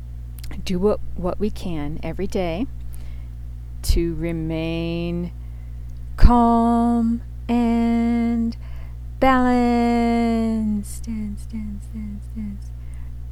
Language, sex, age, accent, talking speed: English, female, 40-59, American, 65 wpm